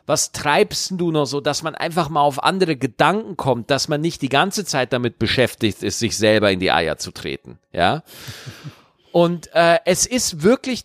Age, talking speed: 40-59, 195 wpm